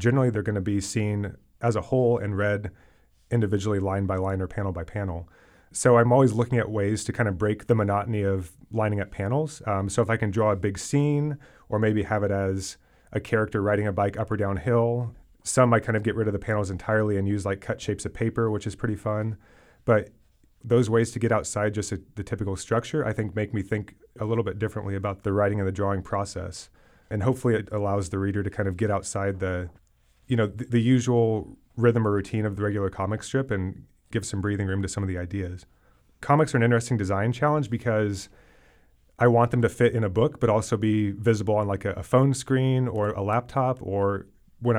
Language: English